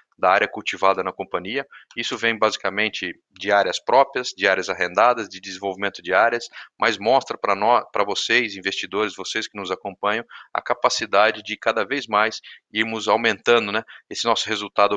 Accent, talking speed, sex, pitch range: Brazilian, 165 wpm, male, 100-115 Hz